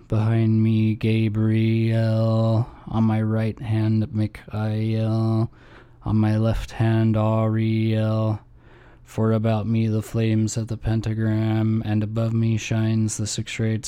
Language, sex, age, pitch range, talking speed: English, male, 20-39, 100-115 Hz, 120 wpm